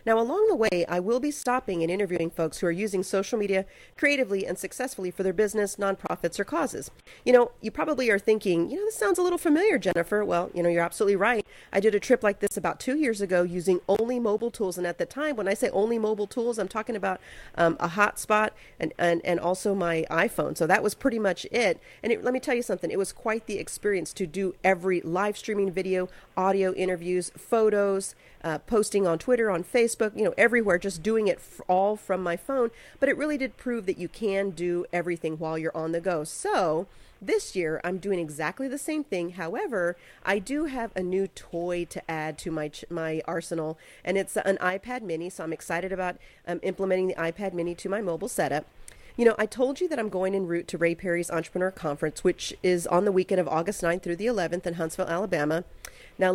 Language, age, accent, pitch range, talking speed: English, 40-59, American, 175-220 Hz, 225 wpm